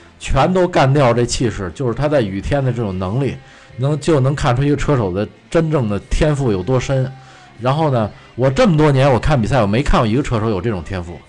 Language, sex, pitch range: Chinese, male, 110-155 Hz